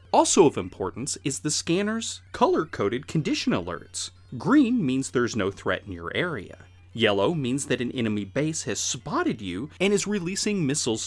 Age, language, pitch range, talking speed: 30-49, English, 95-155 Hz, 165 wpm